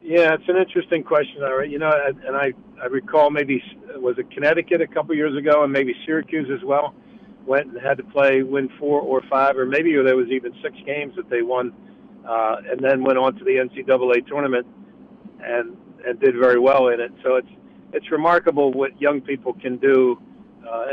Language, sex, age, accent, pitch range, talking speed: English, male, 50-69, American, 125-150 Hz, 200 wpm